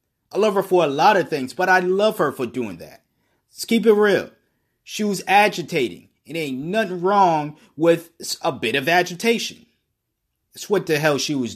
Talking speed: 190 wpm